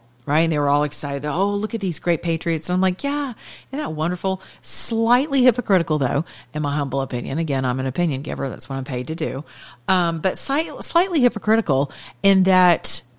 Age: 40-59